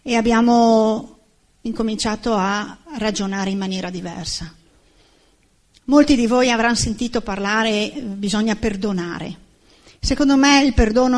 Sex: female